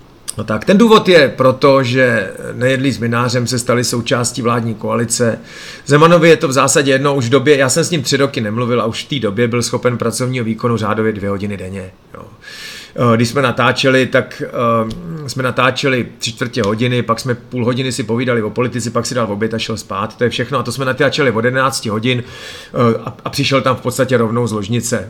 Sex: male